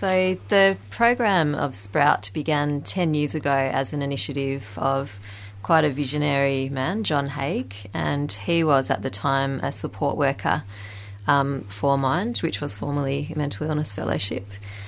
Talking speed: 155 wpm